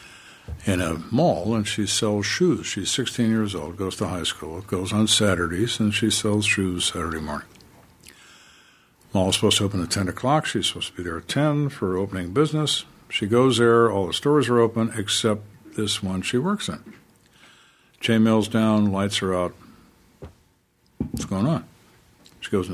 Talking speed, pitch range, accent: 175 wpm, 95-115 Hz, American